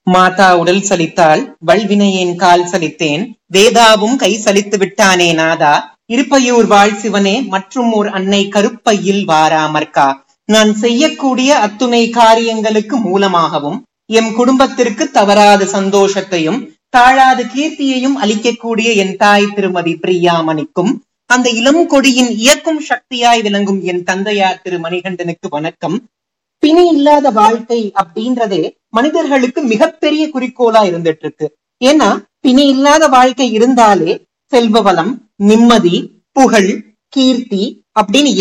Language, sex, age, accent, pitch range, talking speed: Tamil, male, 30-49, native, 195-265 Hz, 100 wpm